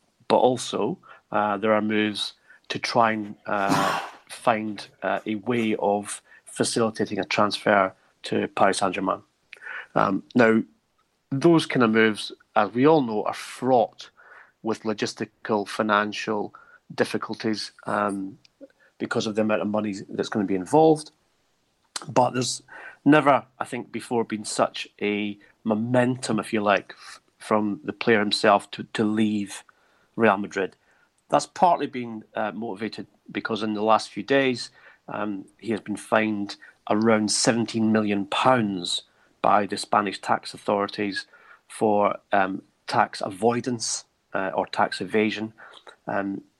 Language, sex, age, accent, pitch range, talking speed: English, male, 30-49, British, 105-115 Hz, 135 wpm